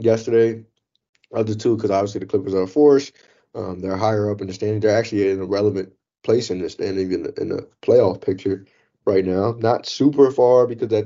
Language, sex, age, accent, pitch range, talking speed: English, male, 20-39, American, 100-120 Hz, 215 wpm